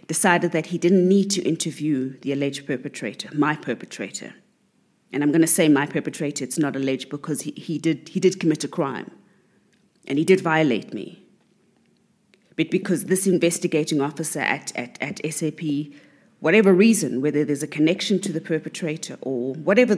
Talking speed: 170 wpm